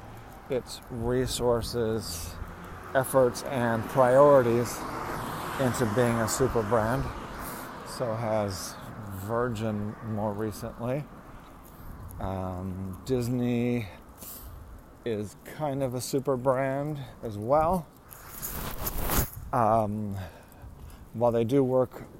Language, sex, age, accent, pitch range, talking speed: English, male, 40-59, American, 100-125 Hz, 80 wpm